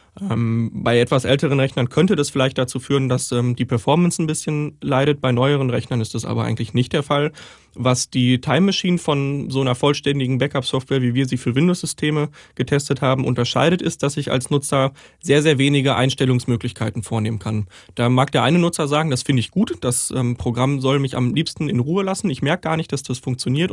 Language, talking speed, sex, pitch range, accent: German, 205 wpm, male, 120-145 Hz, German